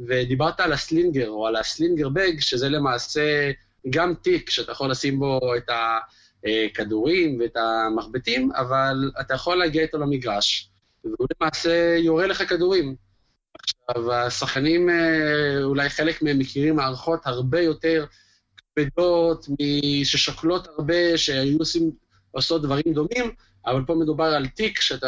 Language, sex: Hebrew, male